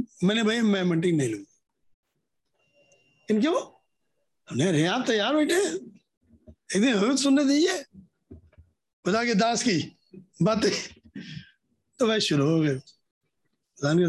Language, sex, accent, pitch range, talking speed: Hindi, male, native, 170-230 Hz, 95 wpm